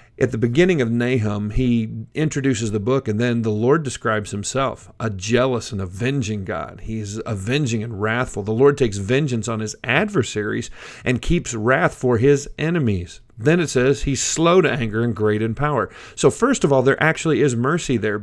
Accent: American